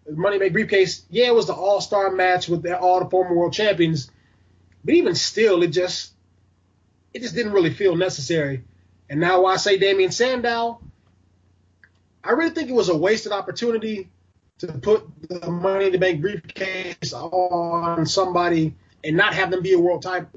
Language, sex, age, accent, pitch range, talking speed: English, male, 20-39, American, 155-195 Hz, 175 wpm